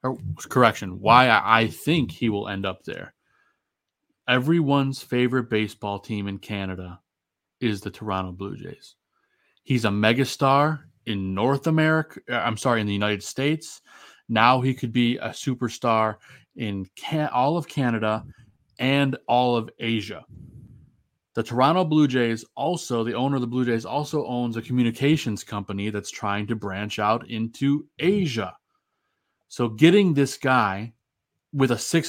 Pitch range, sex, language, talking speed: 110-140 Hz, male, English, 140 wpm